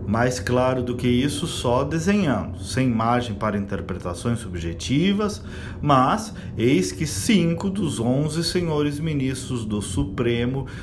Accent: Brazilian